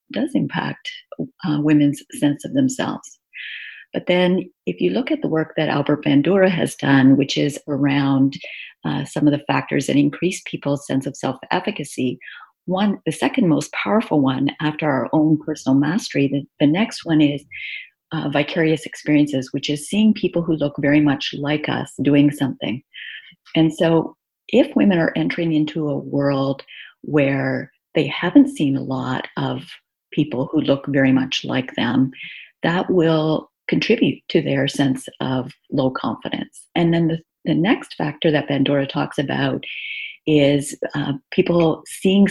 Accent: American